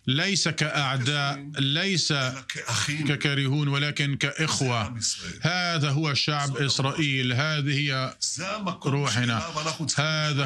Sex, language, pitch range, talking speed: male, Arabic, 140-160 Hz, 80 wpm